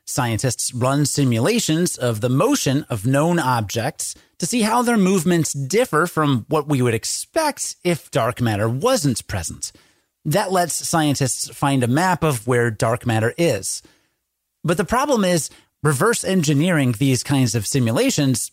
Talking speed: 150 wpm